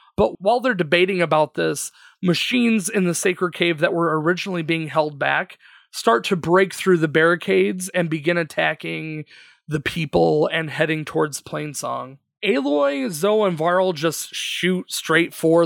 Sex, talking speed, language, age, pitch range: male, 155 wpm, English, 30-49, 155-180 Hz